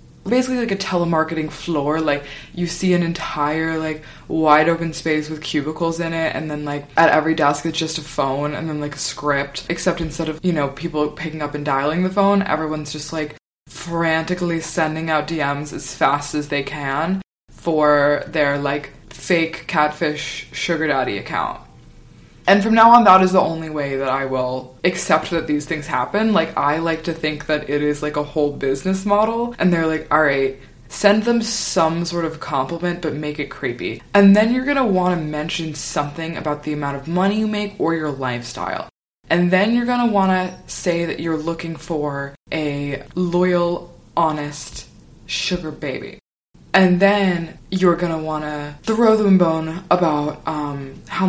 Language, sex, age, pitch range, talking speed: English, female, 20-39, 145-180 Hz, 185 wpm